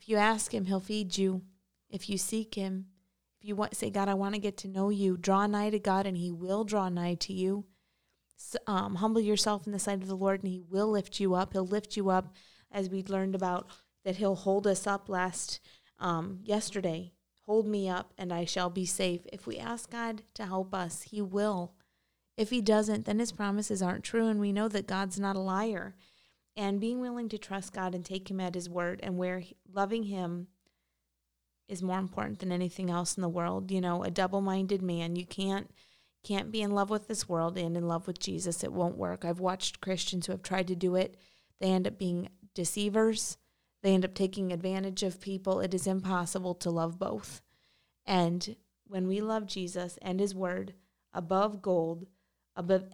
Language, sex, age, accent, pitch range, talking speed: English, female, 30-49, American, 180-205 Hz, 205 wpm